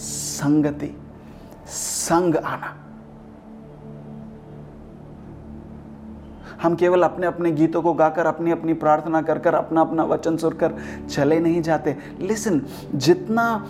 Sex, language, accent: male, English, Indian